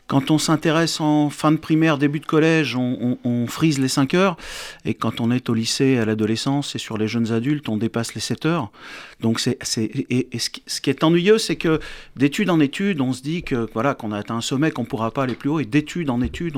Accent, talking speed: French, 235 wpm